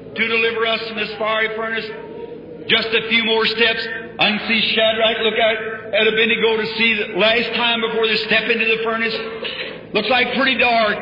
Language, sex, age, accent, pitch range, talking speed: English, male, 50-69, American, 215-230 Hz, 190 wpm